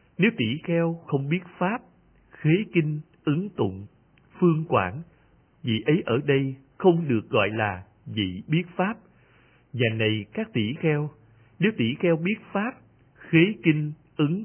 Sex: male